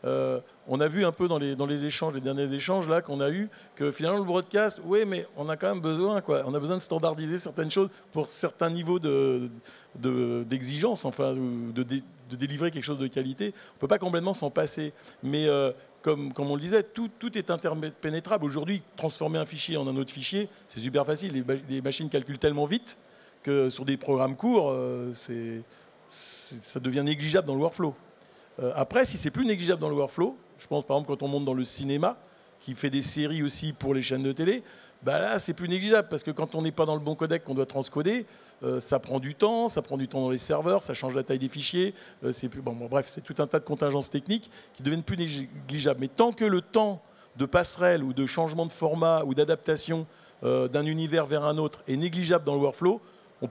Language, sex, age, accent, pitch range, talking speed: French, male, 40-59, French, 135-175 Hz, 235 wpm